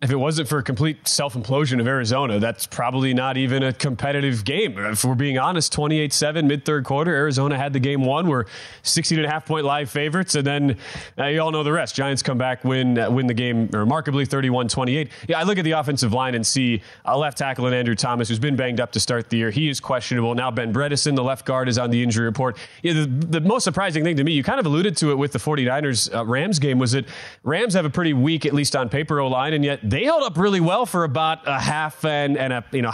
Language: English